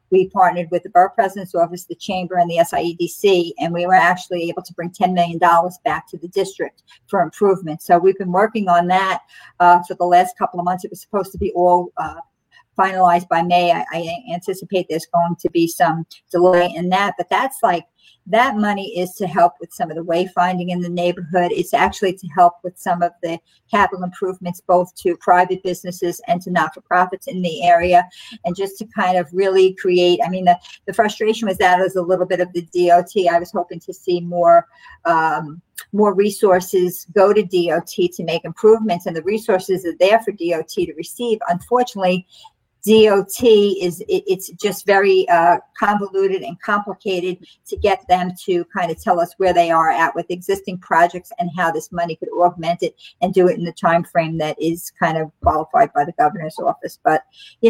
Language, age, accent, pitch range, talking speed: English, 50-69, American, 175-200 Hz, 200 wpm